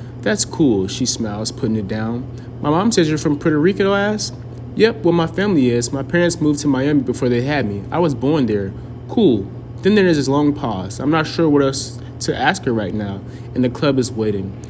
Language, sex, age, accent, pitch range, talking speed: English, male, 20-39, American, 120-155 Hz, 230 wpm